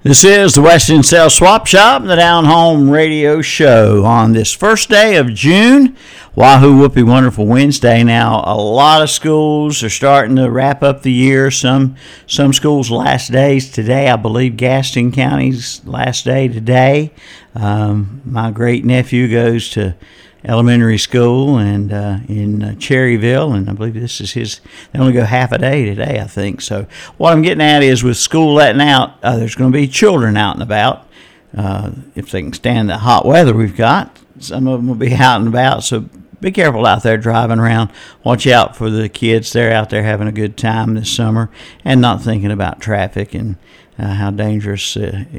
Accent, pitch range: American, 110-140 Hz